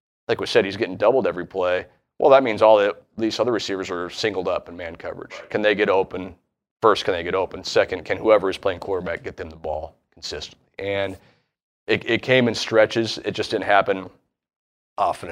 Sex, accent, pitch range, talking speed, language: male, American, 85-110 Hz, 205 wpm, English